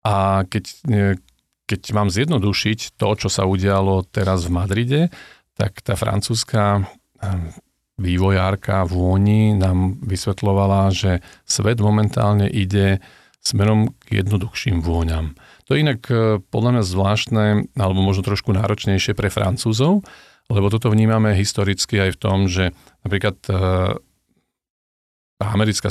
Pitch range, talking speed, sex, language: 95-110 Hz, 115 wpm, male, Slovak